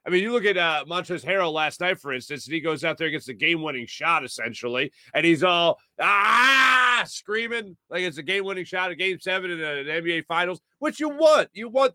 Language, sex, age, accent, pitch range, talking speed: English, male, 40-59, American, 140-215 Hz, 225 wpm